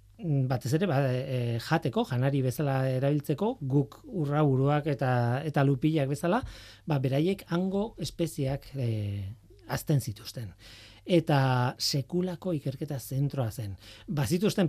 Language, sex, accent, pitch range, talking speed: Spanish, male, Spanish, 115-150 Hz, 120 wpm